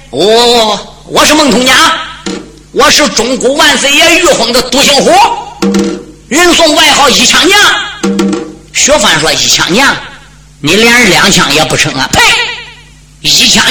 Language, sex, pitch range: Chinese, female, 220-335 Hz